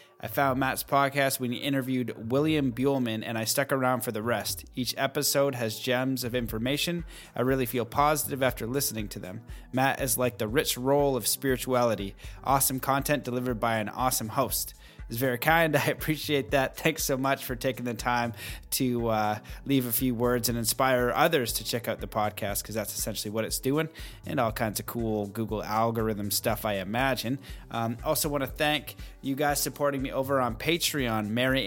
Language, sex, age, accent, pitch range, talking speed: English, male, 20-39, American, 115-135 Hz, 190 wpm